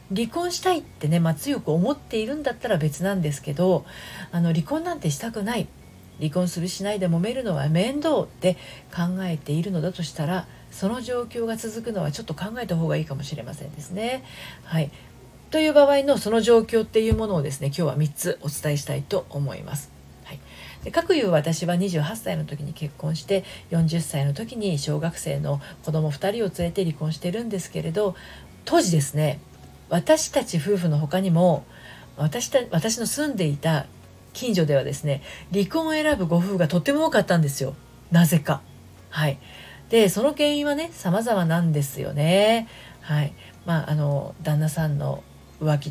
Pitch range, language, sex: 150-210 Hz, Japanese, female